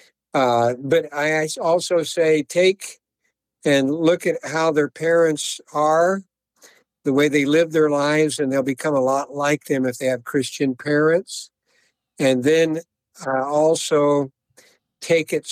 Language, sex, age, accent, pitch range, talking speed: English, male, 60-79, American, 135-160 Hz, 145 wpm